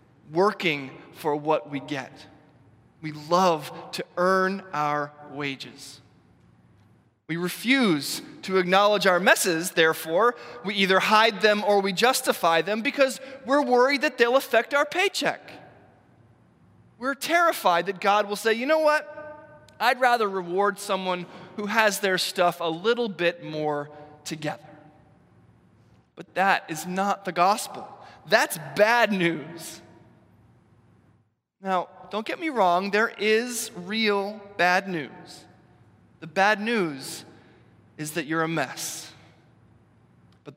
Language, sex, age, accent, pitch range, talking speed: English, male, 20-39, American, 145-200 Hz, 125 wpm